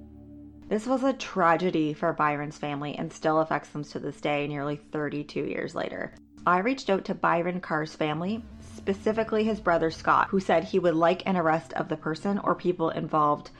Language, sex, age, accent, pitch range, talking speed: English, female, 30-49, American, 155-190 Hz, 185 wpm